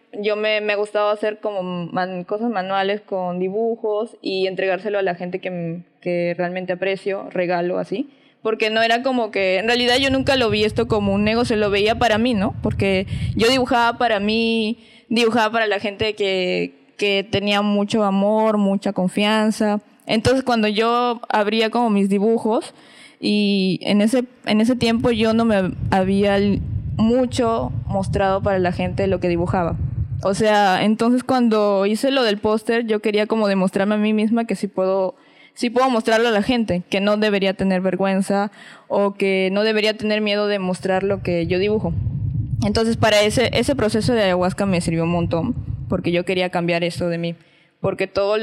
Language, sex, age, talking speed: Spanish, female, 20-39, 180 wpm